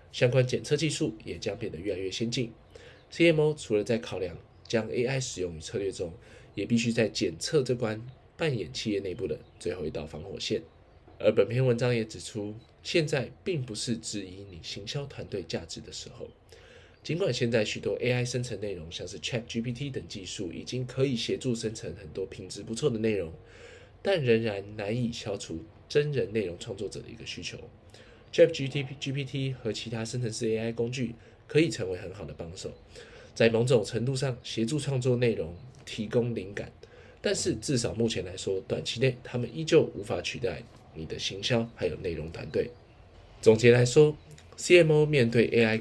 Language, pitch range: Chinese, 110-130 Hz